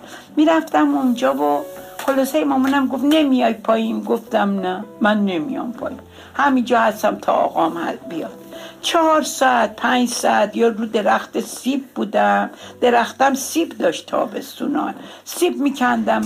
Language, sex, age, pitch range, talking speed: Persian, female, 60-79, 225-290 Hz, 140 wpm